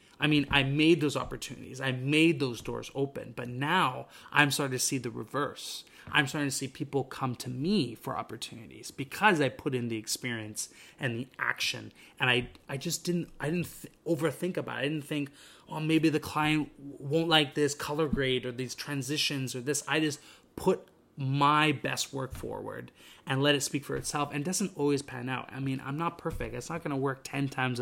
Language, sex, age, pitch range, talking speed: English, male, 30-49, 125-155 Hz, 210 wpm